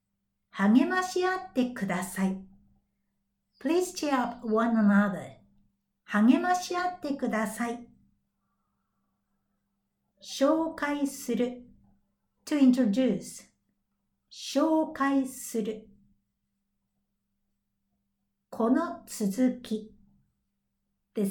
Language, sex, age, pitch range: Japanese, female, 50-69, 190-290 Hz